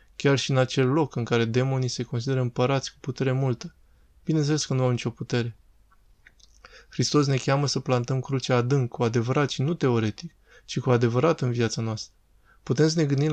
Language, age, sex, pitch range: Romanian, 20-39, male, 120-140 Hz